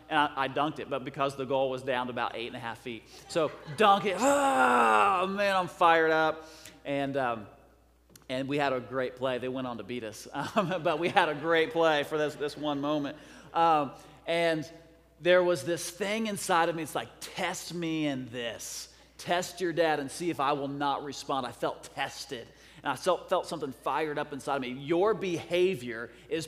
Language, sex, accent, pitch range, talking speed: English, male, American, 140-180 Hz, 205 wpm